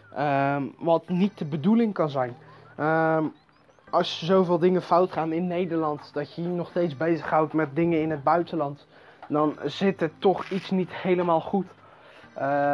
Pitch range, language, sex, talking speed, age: 150-180 Hz, Dutch, male, 170 wpm, 20-39